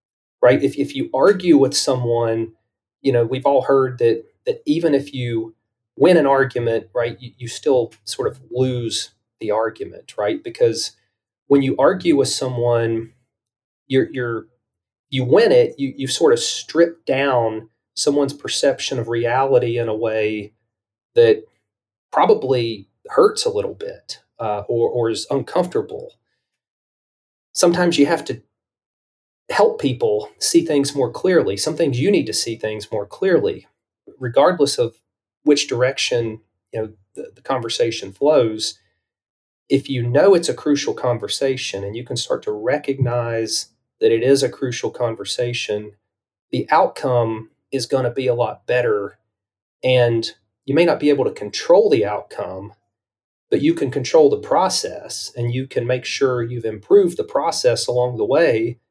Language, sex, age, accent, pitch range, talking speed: English, male, 30-49, American, 115-175 Hz, 155 wpm